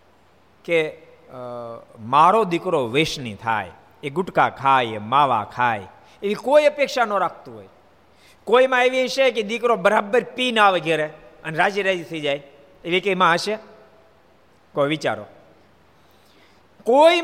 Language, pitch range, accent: Gujarati, 120-180 Hz, native